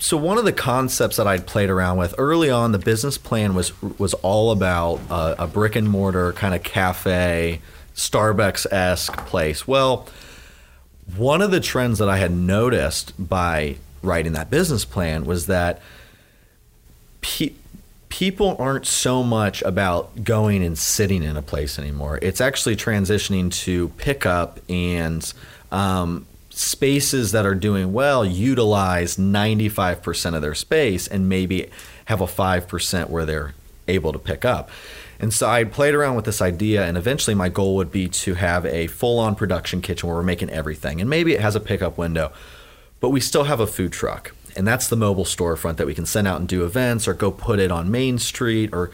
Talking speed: 180 wpm